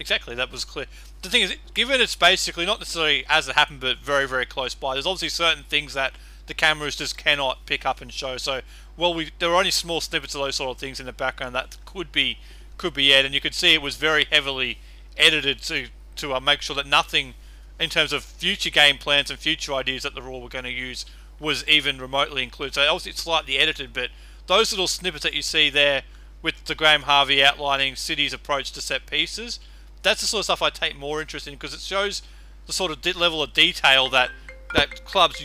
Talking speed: 230 wpm